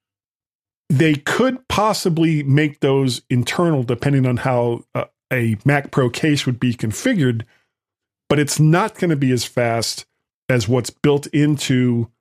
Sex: male